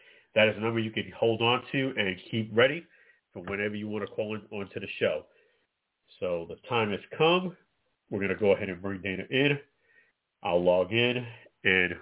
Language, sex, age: English, male, 40-59